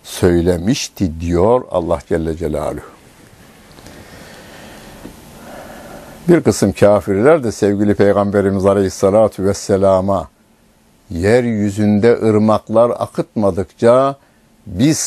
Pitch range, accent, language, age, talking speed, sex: 85-110 Hz, native, Turkish, 60-79, 70 wpm, male